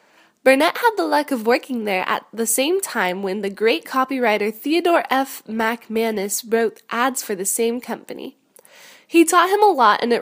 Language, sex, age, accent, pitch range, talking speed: English, female, 10-29, American, 230-310 Hz, 180 wpm